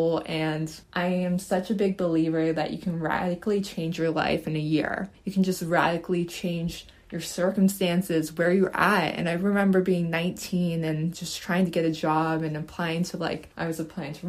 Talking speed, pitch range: 195 wpm, 165-195 Hz